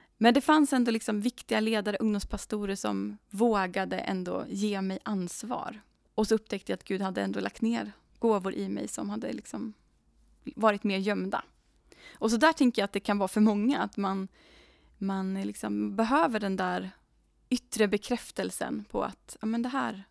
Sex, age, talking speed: female, 20-39, 175 wpm